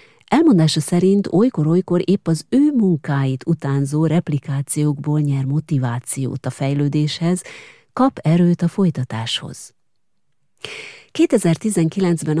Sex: female